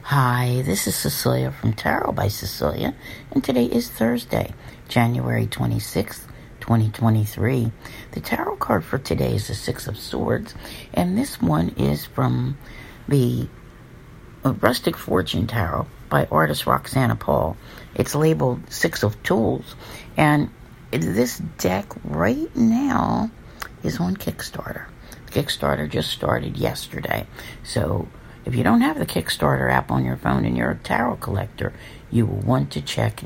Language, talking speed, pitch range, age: English, 135 wpm, 105-125 Hz, 60-79